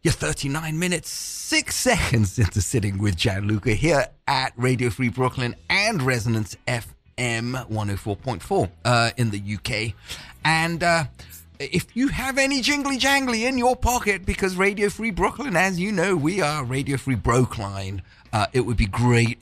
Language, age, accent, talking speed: English, 30-49, British, 160 wpm